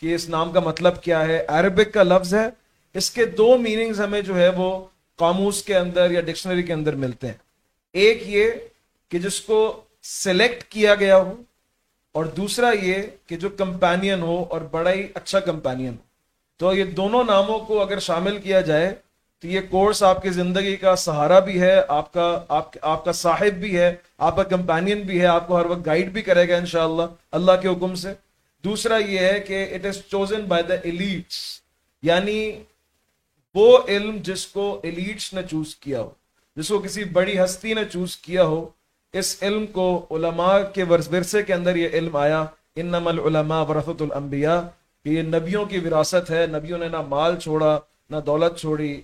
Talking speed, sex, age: 180 wpm, male, 40-59